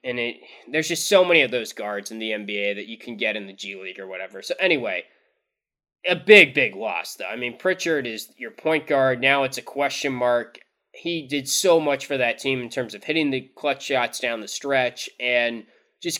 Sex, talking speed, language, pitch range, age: male, 220 wpm, English, 120-145 Hz, 20-39